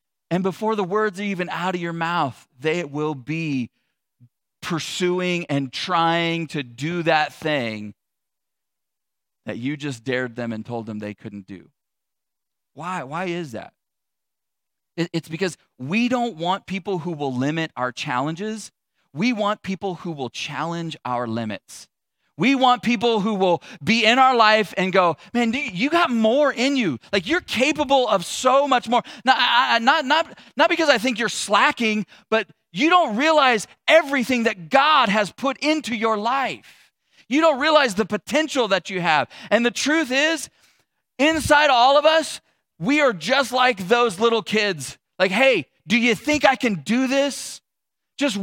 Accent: American